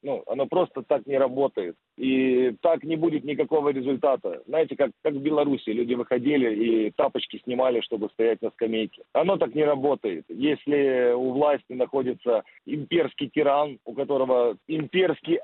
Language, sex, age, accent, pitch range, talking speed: Russian, male, 40-59, native, 135-175 Hz, 150 wpm